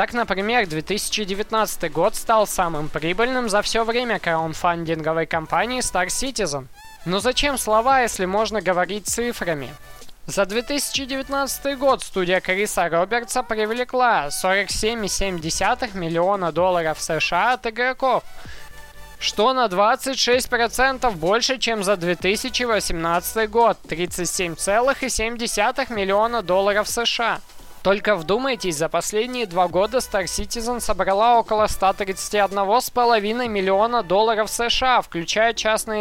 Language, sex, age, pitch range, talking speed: Russian, male, 20-39, 180-240 Hz, 105 wpm